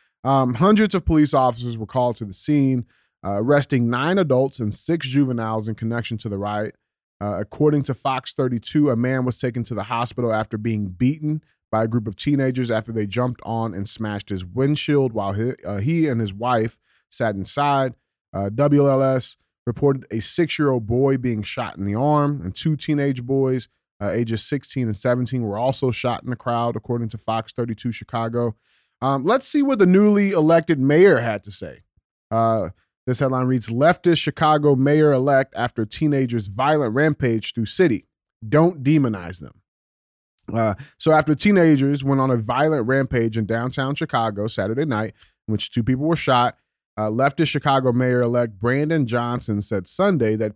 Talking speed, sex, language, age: 175 wpm, male, English, 30-49